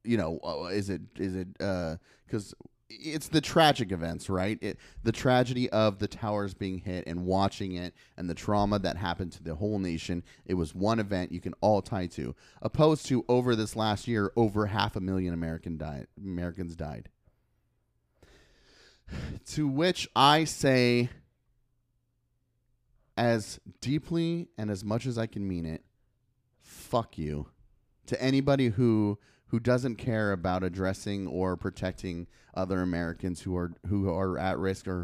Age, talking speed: 30-49, 155 wpm